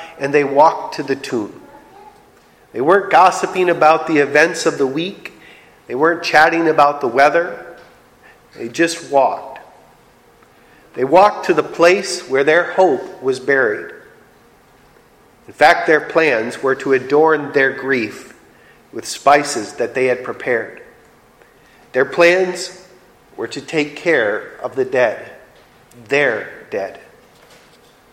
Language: English